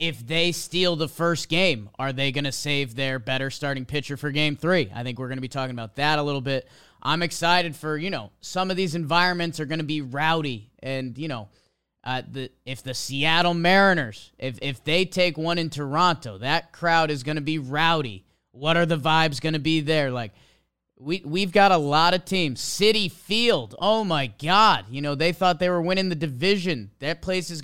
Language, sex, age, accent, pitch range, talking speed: English, male, 30-49, American, 135-175 Hz, 215 wpm